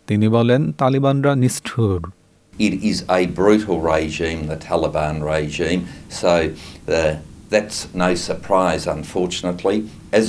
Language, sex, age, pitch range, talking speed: Bengali, male, 60-79, 95-150 Hz, 85 wpm